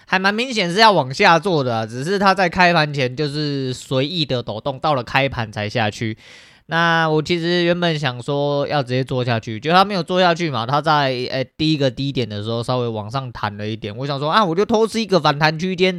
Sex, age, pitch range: male, 20-39, 115-155 Hz